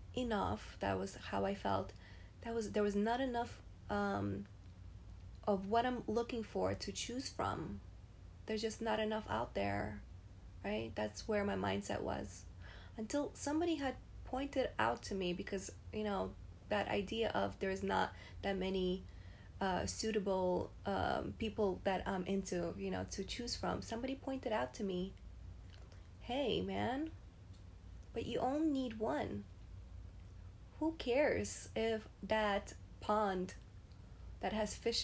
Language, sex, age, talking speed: English, female, 20-39, 140 wpm